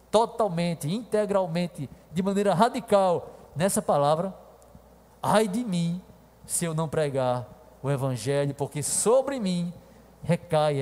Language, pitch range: Portuguese, 140-185 Hz